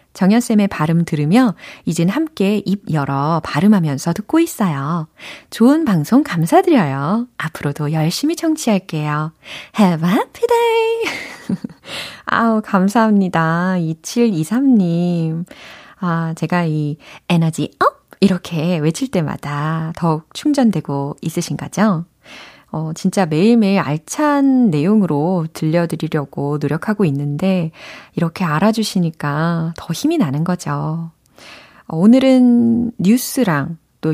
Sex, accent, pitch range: female, native, 155-215 Hz